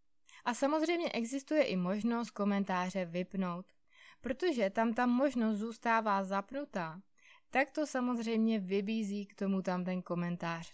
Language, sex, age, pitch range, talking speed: Czech, female, 20-39, 195-265 Hz, 125 wpm